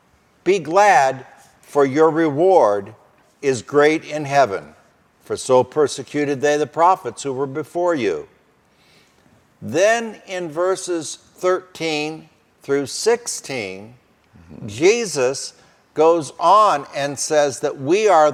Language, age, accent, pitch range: English, 60-79, American, 145-190 Hz